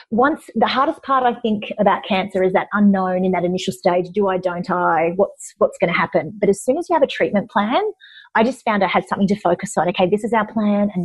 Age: 30-49